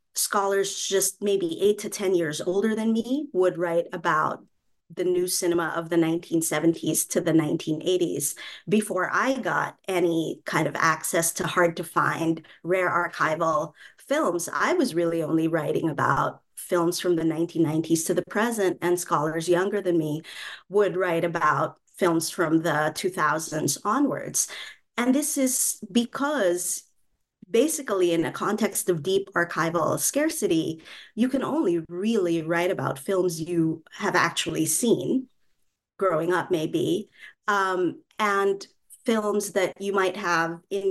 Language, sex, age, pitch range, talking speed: English, female, 30-49, 165-210 Hz, 140 wpm